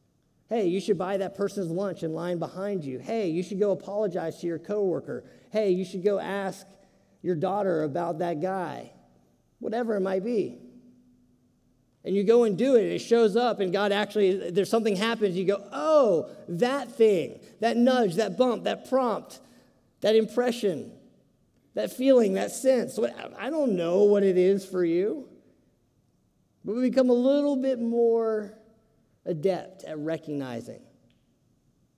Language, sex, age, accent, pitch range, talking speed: English, male, 40-59, American, 155-210 Hz, 155 wpm